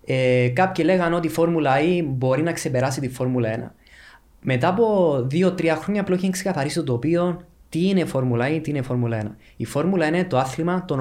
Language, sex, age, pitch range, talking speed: Greek, male, 20-39, 125-170 Hz, 200 wpm